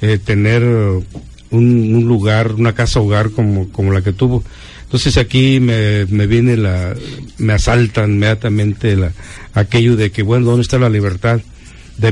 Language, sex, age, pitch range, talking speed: Spanish, male, 50-69, 105-125 Hz, 160 wpm